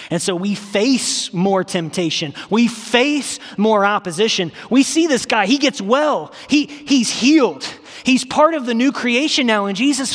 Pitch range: 165-255 Hz